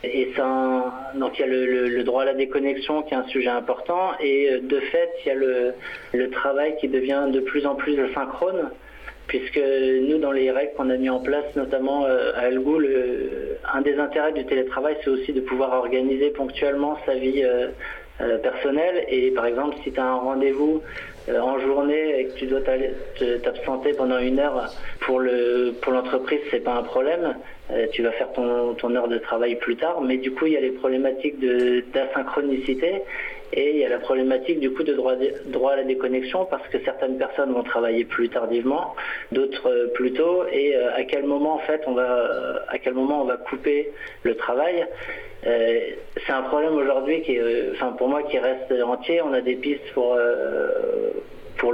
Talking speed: 200 wpm